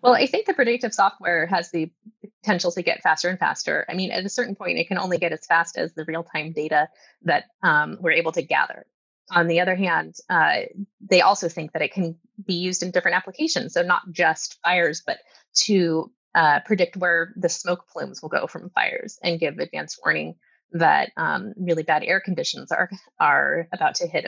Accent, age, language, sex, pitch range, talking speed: American, 20-39, English, female, 165-200 Hz, 205 wpm